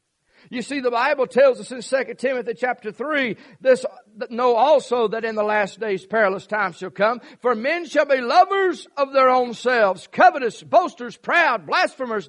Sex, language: male, English